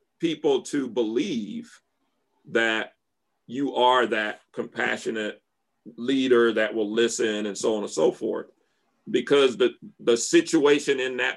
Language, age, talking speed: English, 40-59, 125 wpm